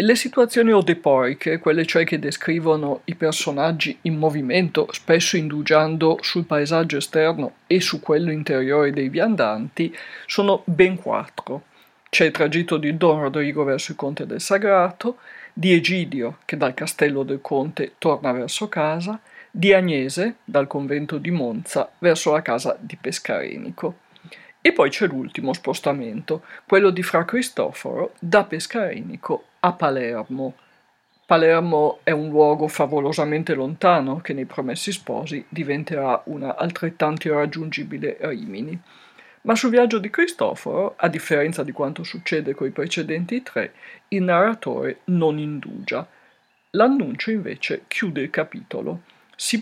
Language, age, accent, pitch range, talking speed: Italian, 50-69, native, 150-195 Hz, 130 wpm